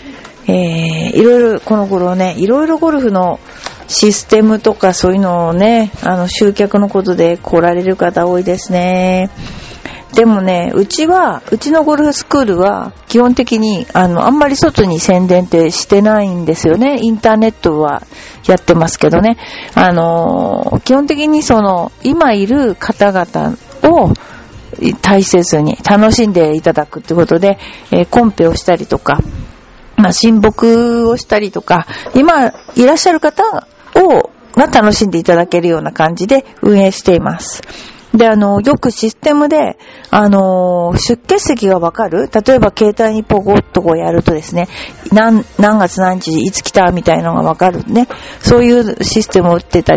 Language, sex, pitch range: Japanese, female, 180-235 Hz